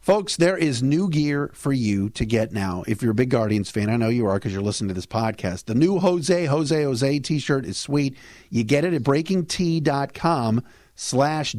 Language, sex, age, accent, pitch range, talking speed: English, male, 50-69, American, 125-175 Hz, 205 wpm